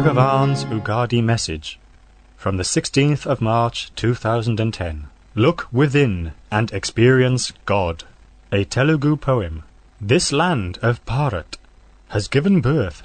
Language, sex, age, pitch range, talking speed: English, male, 40-59, 95-135 Hz, 110 wpm